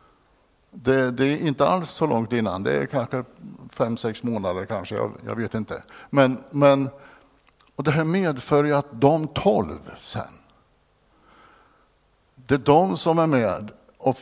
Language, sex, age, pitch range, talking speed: Swedish, male, 60-79, 110-145 Hz, 150 wpm